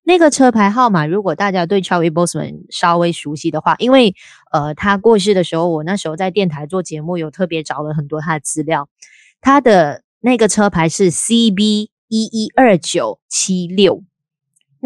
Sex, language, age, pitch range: female, Chinese, 20-39, 165-230 Hz